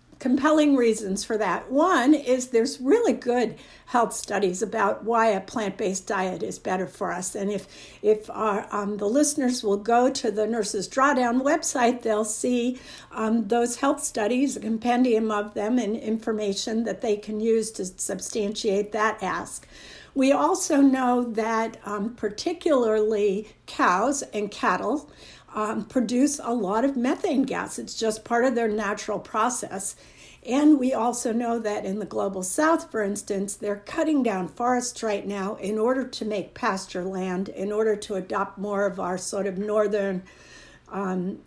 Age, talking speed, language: 60-79, 160 wpm, English